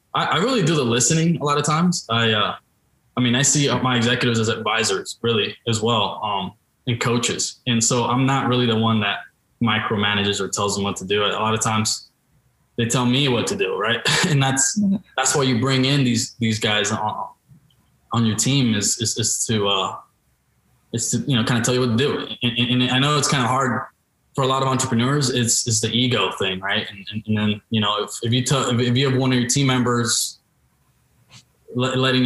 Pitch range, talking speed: 110-130 Hz, 220 wpm